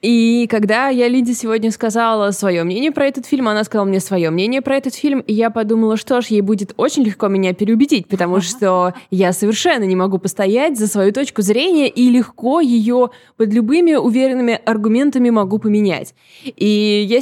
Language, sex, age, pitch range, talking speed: Russian, female, 20-39, 190-250 Hz, 180 wpm